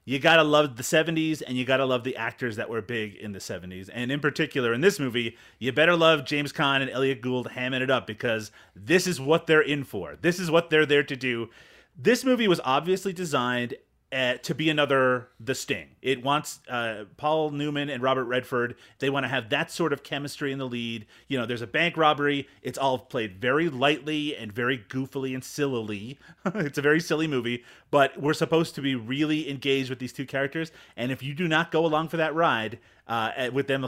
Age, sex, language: 30-49, male, English